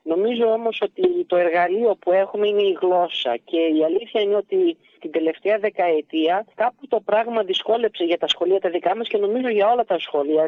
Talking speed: 195 wpm